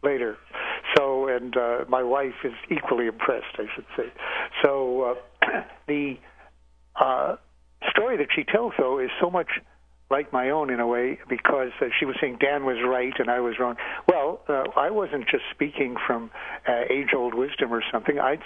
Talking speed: 180 wpm